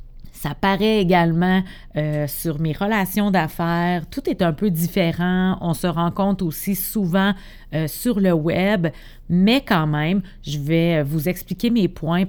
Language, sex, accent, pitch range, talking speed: French, female, Canadian, 155-195 Hz, 150 wpm